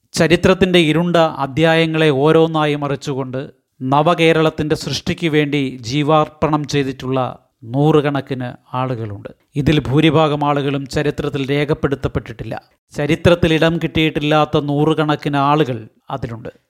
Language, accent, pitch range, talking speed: Malayalam, native, 135-160 Hz, 80 wpm